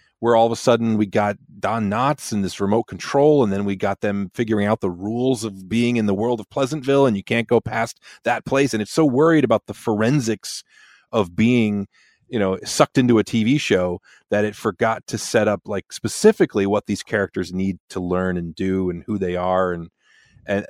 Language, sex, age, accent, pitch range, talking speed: English, male, 30-49, American, 95-120 Hz, 215 wpm